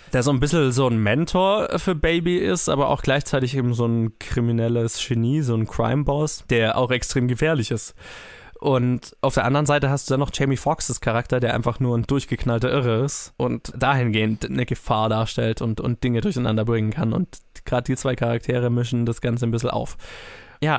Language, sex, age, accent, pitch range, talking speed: German, male, 20-39, German, 120-140 Hz, 195 wpm